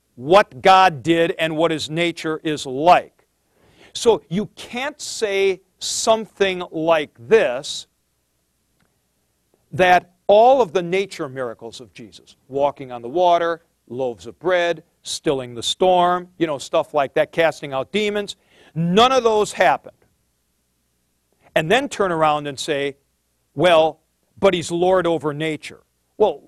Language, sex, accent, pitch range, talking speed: English, male, American, 150-200 Hz, 135 wpm